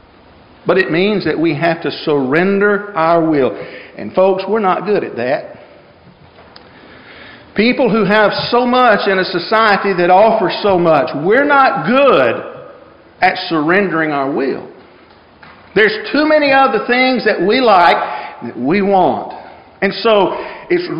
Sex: male